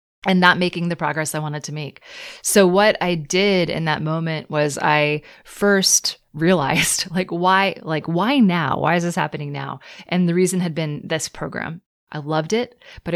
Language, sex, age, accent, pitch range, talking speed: English, female, 30-49, American, 155-185 Hz, 185 wpm